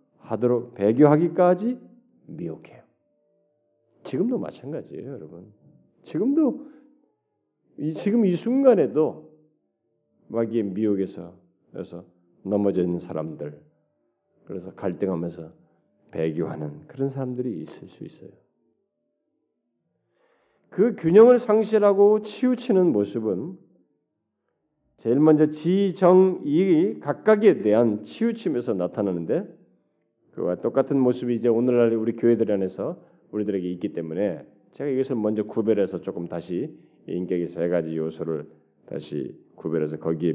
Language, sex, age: Korean, male, 40-59